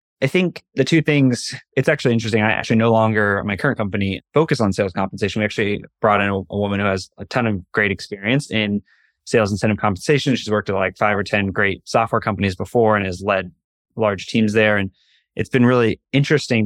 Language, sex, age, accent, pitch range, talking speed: English, male, 20-39, American, 100-120 Hz, 215 wpm